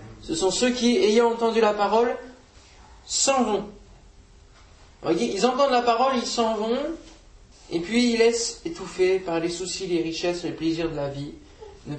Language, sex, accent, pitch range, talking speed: French, male, French, 150-210 Hz, 170 wpm